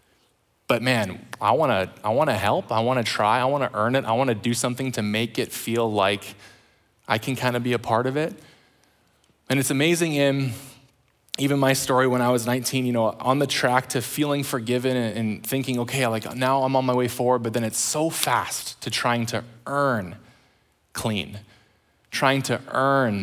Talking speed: 190 wpm